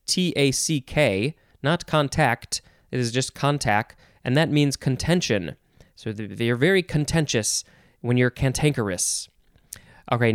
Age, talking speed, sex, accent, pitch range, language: 20-39, 110 wpm, male, American, 125-165 Hz, English